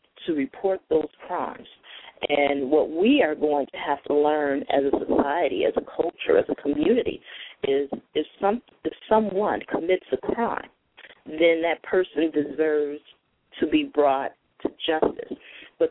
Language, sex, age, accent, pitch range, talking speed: English, female, 30-49, American, 140-170 Hz, 145 wpm